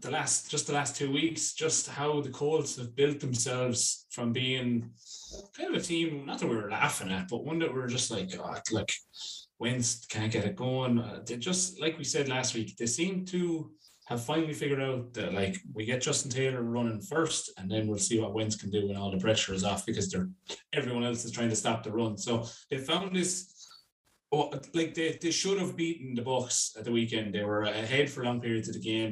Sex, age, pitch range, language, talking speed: male, 20-39, 110-140 Hz, English, 225 wpm